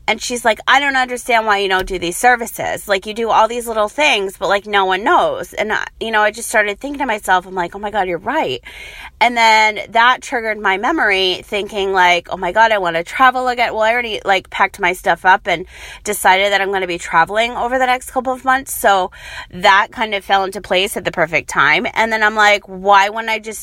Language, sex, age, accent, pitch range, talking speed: English, female, 30-49, American, 190-240 Hz, 245 wpm